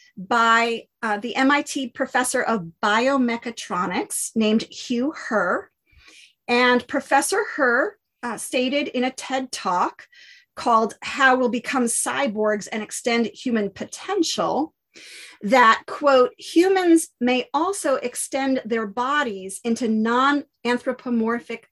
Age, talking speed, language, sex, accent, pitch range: 40-59, 105 wpm, English, female, American, 220-280 Hz